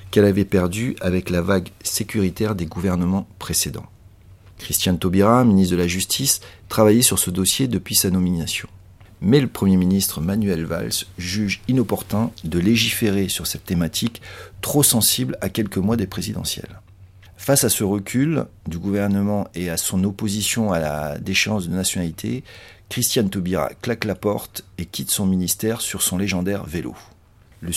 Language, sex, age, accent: French, male, 40-59, French